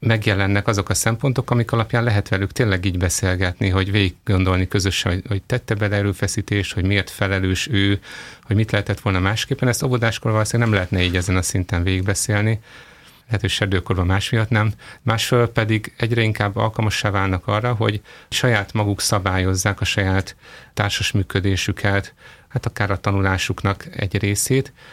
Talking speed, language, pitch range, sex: 155 wpm, Hungarian, 95-110 Hz, male